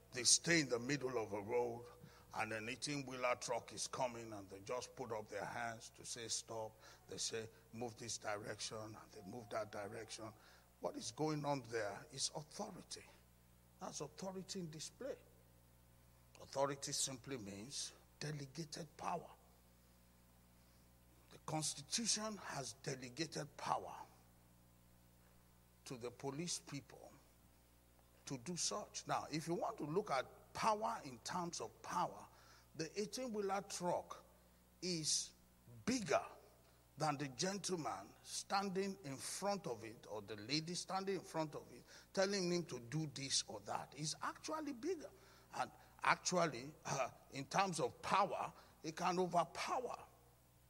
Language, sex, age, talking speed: English, male, 60-79, 135 wpm